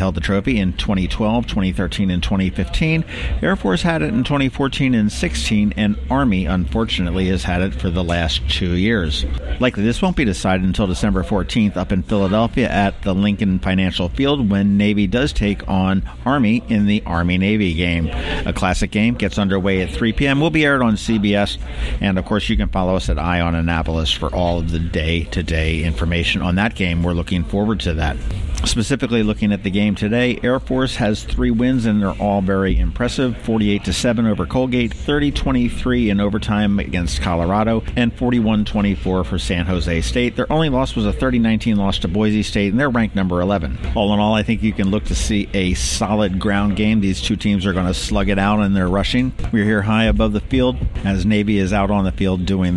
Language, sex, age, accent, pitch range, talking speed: English, male, 60-79, American, 90-110 Hz, 200 wpm